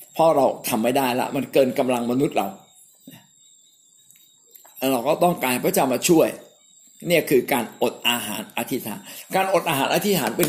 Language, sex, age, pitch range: Thai, male, 60-79, 140-200 Hz